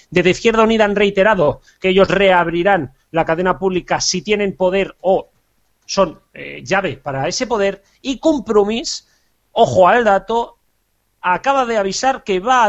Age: 40-59